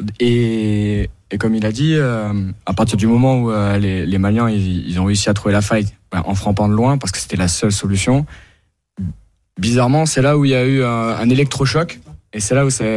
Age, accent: 20-39, French